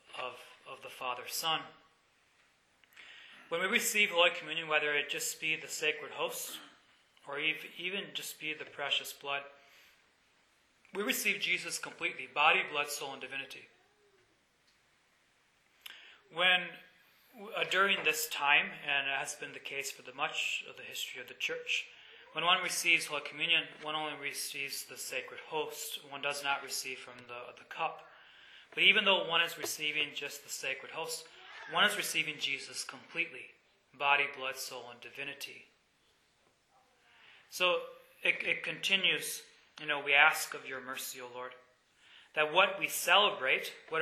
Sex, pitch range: male, 140-200 Hz